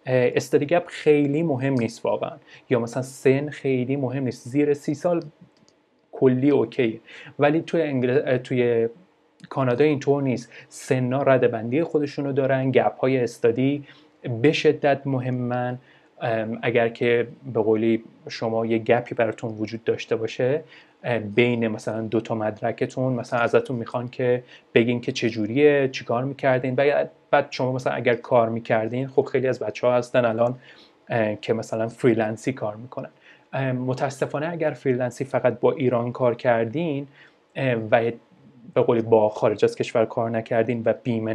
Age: 30-49